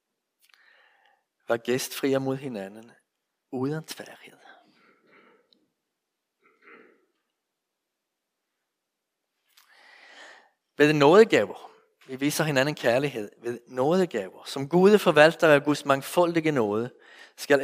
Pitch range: 135-190 Hz